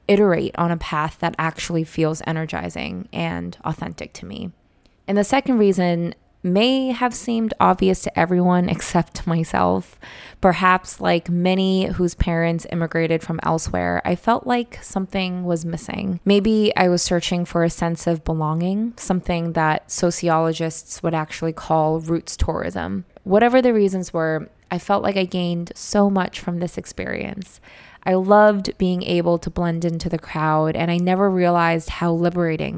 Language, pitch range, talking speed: English, 165-190 Hz, 155 wpm